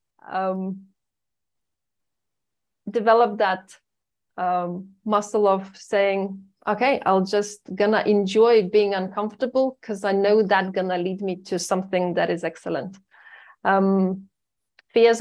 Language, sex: English, female